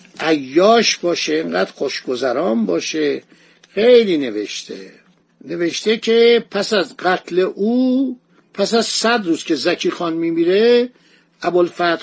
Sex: male